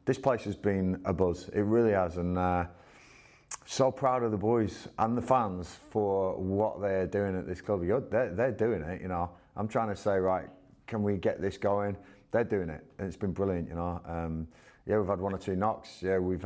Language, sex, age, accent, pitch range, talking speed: English, male, 30-49, British, 90-105 Hz, 225 wpm